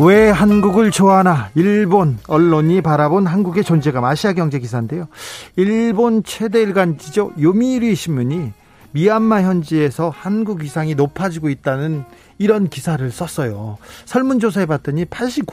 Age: 40-59